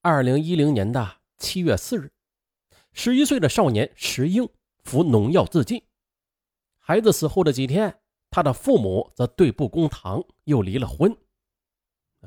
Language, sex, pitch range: Chinese, male, 130-195 Hz